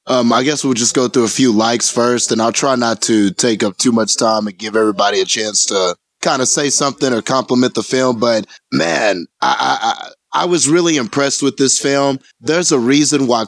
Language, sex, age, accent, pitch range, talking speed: English, male, 30-49, American, 120-140 Hz, 225 wpm